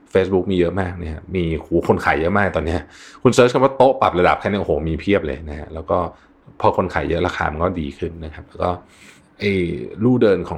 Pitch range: 85-115 Hz